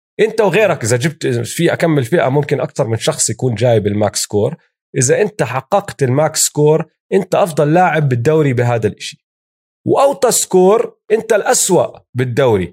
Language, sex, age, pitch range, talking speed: Arabic, male, 30-49, 125-185 Hz, 145 wpm